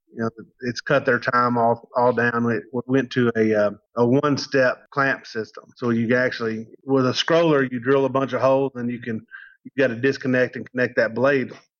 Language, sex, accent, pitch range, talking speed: English, male, American, 115-135 Hz, 200 wpm